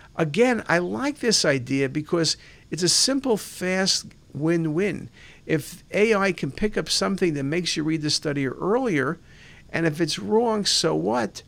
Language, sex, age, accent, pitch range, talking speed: English, male, 50-69, American, 140-185 Hz, 155 wpm